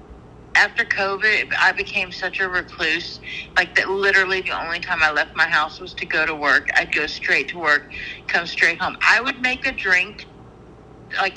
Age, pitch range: 50-69, 185-210 Hz